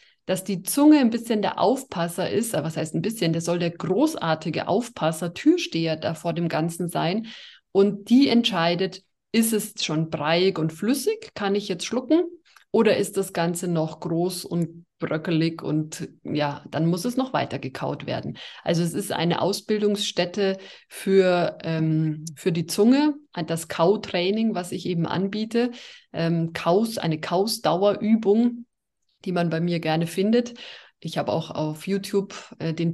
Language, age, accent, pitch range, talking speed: German, 30-49, German, 165-205 Hz, 160 wpm